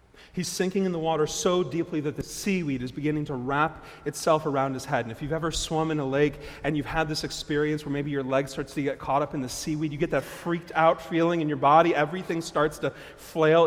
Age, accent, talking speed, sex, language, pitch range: 30-49, American, 245 wpm, male, English, 110-170 Hz